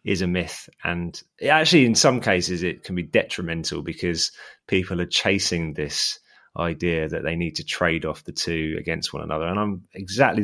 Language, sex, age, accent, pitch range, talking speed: English, male, 20-39, British, 90-110 Hz, 185 wpm